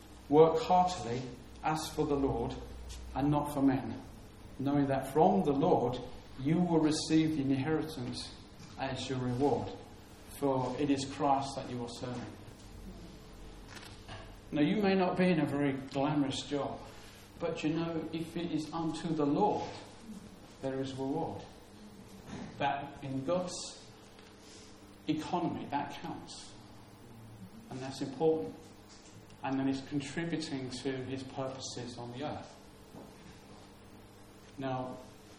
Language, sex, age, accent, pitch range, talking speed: English, male, 40-59, British, 110-145 Hz, 125 wpm